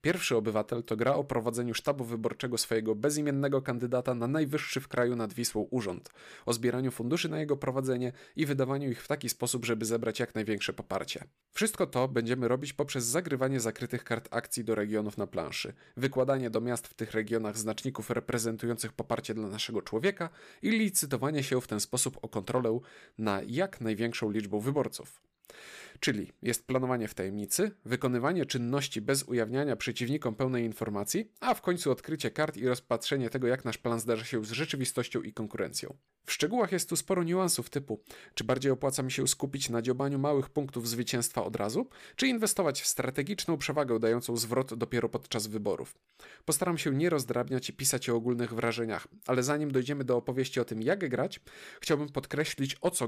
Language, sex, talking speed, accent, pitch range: Polish, male, 175 wpm, native, 115-140 Hz